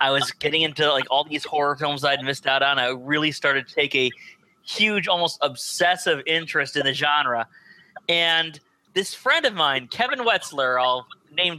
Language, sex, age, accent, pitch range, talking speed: English, male, 30-49, American, 145-200 Hz, 180 wpm